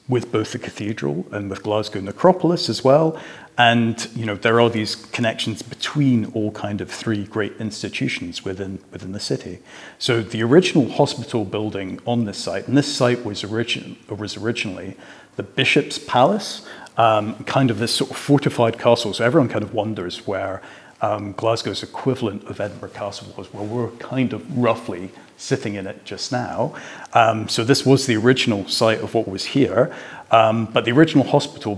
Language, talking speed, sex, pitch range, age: English, 180 wpm, male, 100-120 Hz, 40-59